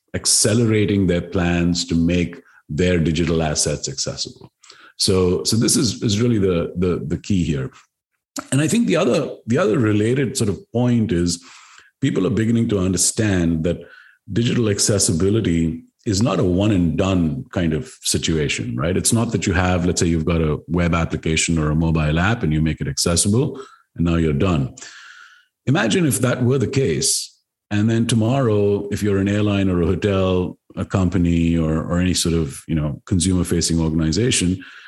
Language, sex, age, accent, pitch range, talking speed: English, male, 50-69, Indian, 85-105 Hz, 175 wpm